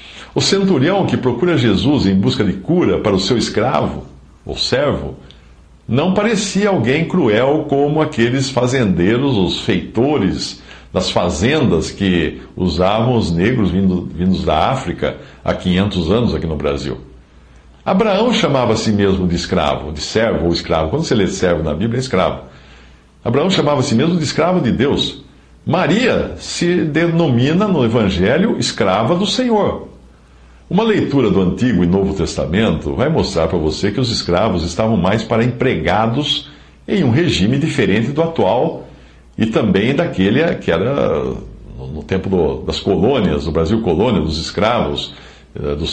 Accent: Brazilian